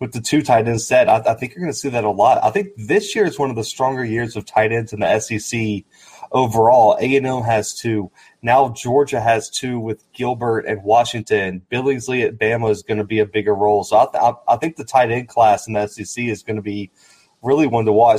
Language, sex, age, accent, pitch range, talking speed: English, male, 20-39, American, 110-140 Hz, 245 wpm